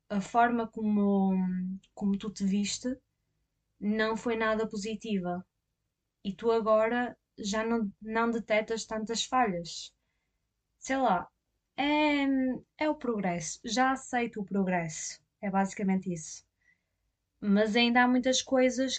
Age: 20-39